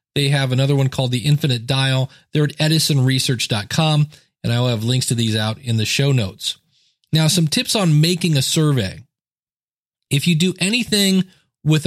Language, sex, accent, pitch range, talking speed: English, male, American, 125-165 Hz, 170 wpm